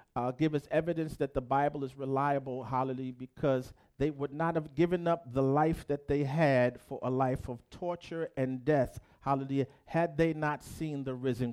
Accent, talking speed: American, 185 wpm